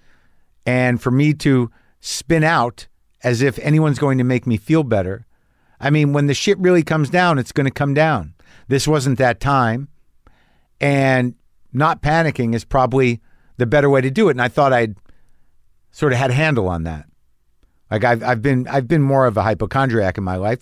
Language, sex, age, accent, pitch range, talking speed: English, male, 50-69, American, 105-145 Hz, 195 wpm